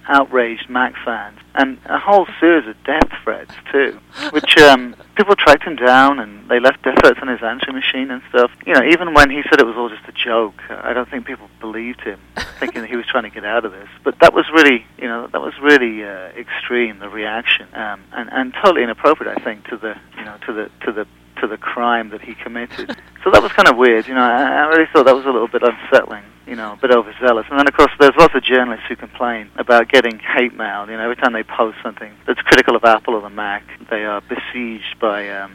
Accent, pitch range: British, 110-135 Hz